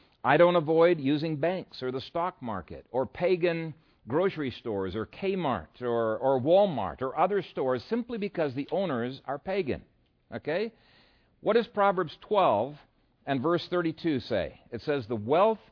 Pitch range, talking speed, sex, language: 135-190 Hz, 155 wpm, male, English